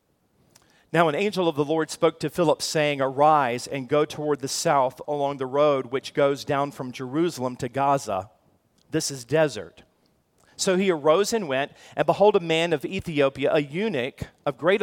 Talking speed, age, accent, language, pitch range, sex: 180 wpm, 40-59, American, English, 140-175 Hz, male